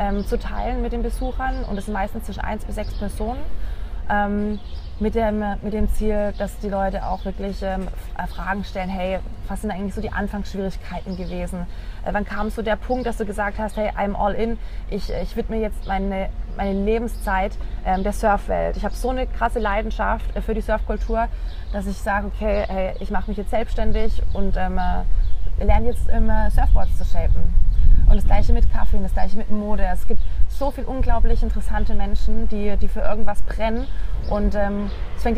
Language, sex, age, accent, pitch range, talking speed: German, female, 20-39, German, 190-220 Hz, 185 wpm